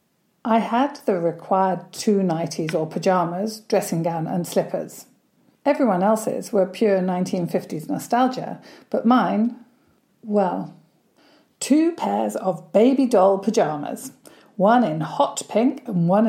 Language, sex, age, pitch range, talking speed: English, female, 40-59, 185-250 Hz, 120 wpm